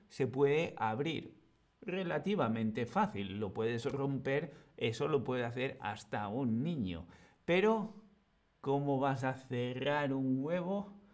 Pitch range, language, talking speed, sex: 125-175 Hz, Spanish, 120 wpm, male